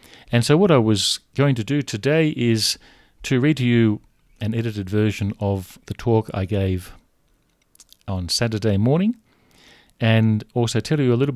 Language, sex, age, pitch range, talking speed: English, male, 40-59, 100-120 Hz, 165 wpm